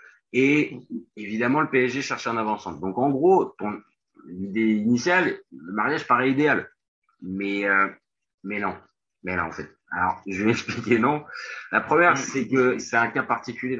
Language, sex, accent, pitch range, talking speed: French, male, French, 95-125 Hz, 160 wpm